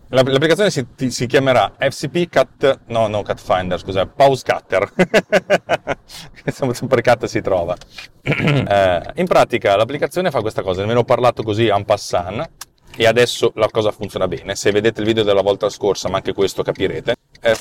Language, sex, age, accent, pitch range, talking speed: Italian, male, 30-49, native, 105-145 Hz, 165 wpm